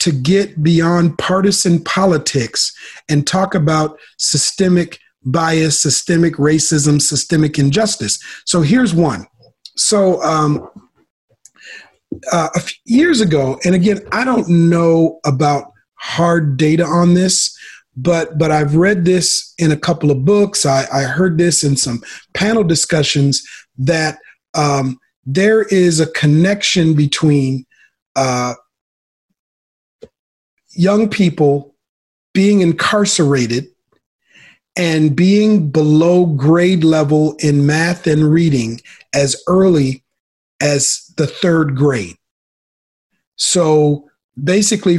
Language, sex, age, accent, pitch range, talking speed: English, male, 40-59, American, 145-180 Hz, 105 wpm